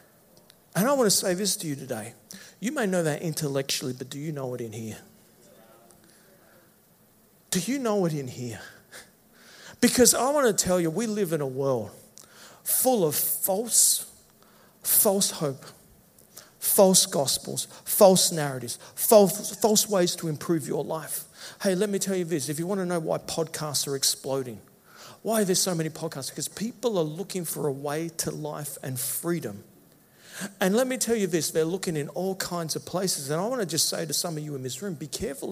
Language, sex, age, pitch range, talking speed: English, male, 50-69, 150-210 Hz, 195 wpm